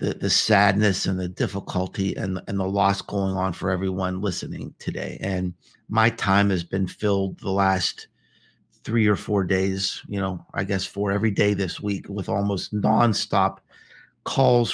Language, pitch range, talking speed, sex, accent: English, 100-135 Hz, 165 wpm, male, American